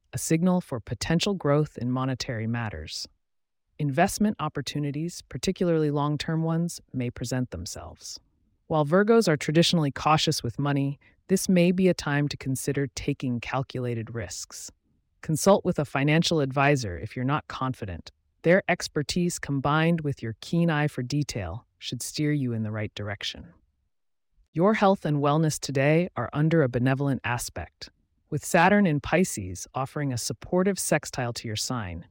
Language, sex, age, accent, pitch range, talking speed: English, female, 30-49, American, 120-160 Hz, 150 wpm